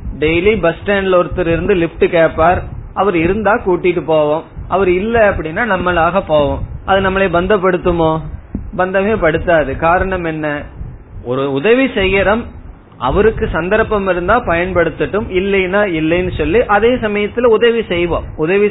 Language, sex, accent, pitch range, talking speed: Tamil, male, native, 150-200 Hz, 115 wpm